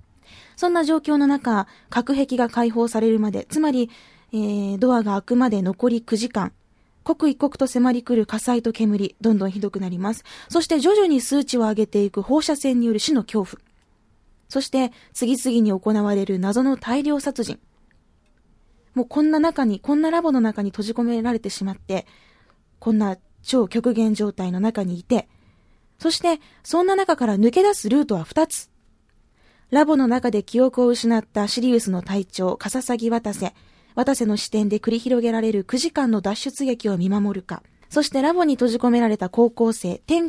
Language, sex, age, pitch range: Japanese, female, 20-39, 205-270 Hz